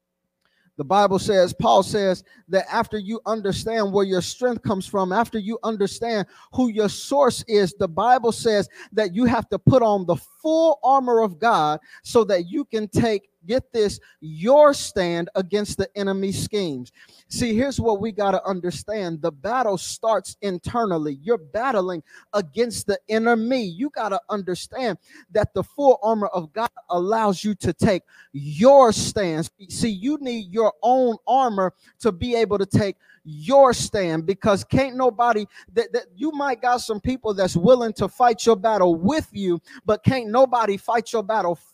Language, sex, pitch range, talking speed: English, male, 195-245 Hz, 170 wpm